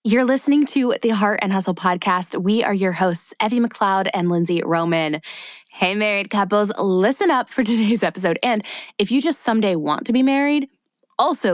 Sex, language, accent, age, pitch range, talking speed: female, English, American, 20-39, 180-235 Hz, 180 wpm